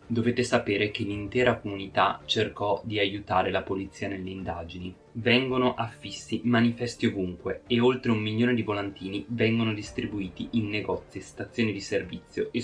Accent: native